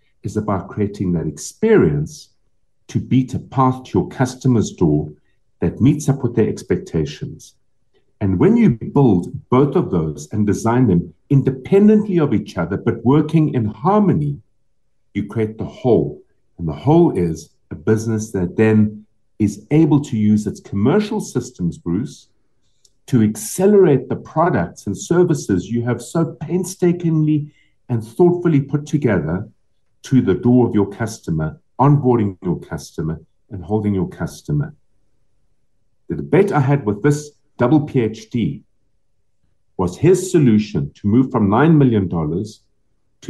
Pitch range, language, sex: 105-145 Hz, English, male